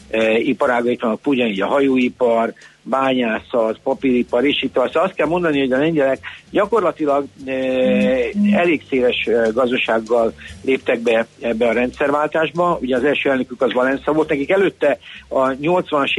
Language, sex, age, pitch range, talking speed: Hungarian, male, 60-79, 120-140 Hz, 145 wpm